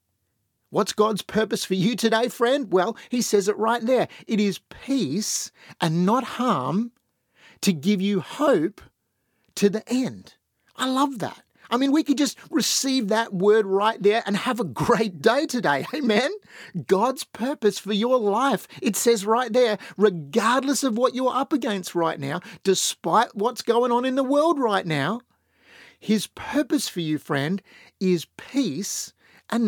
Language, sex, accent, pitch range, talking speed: English, male, Australian, 195-255 Hz, 160 wpm